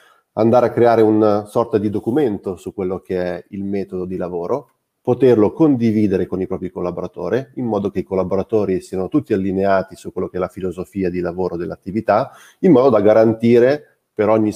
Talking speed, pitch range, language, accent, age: 180 wpm, 95-115 Hz, Italian, native, 30-49